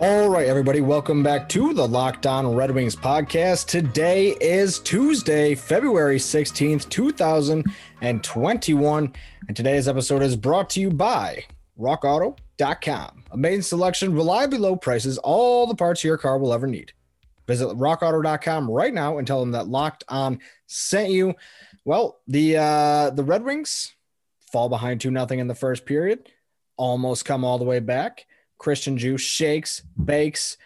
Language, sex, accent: English, male, American